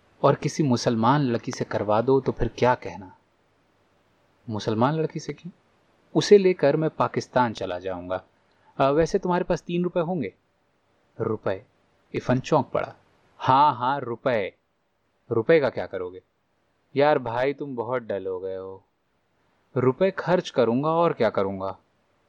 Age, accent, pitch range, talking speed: 30-49, native, 105-150 Hz, 140 wpm